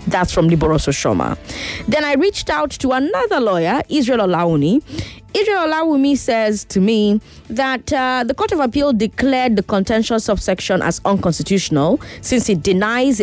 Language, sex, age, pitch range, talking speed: English, female, 20-39, 175-260 Hz, 150 wpm